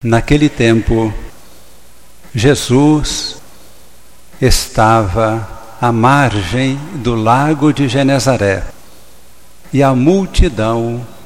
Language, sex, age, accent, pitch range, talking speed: Portuguese, male, 60-79, Brazilian, 105-140 Hz, 70 wpm